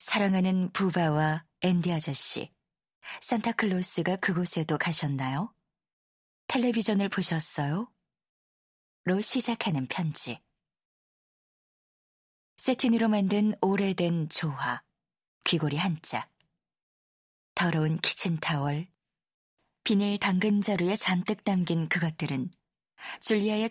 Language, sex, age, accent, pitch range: Korean, female, 20-39, native, 160-205 Hz